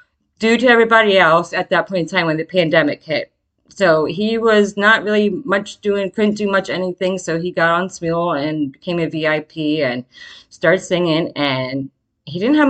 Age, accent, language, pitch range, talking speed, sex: 30-49, American, English, 160-225 Hz, 190 wpm, female